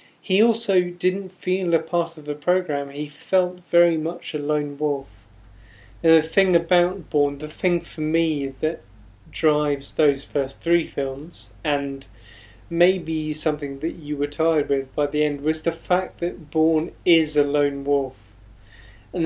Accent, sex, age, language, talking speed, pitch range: British, male, 30-49, English, 160 wpm, 140-165 Hz